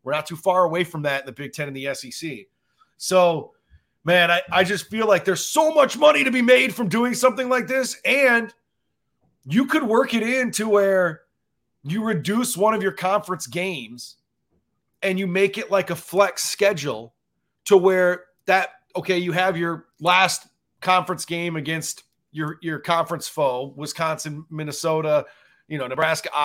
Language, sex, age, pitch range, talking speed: English, male, 30-49, 165-220 Hz, 170 wpm